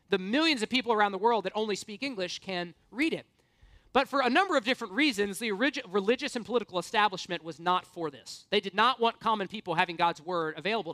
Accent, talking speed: American, 220 wpm